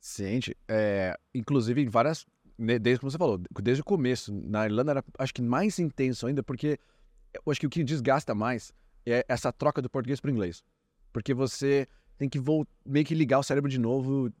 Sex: male